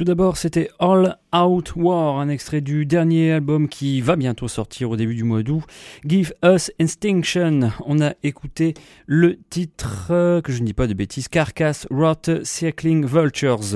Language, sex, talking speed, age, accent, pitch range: English, male, 195 wpm, 30-49, French, 115-160 Hz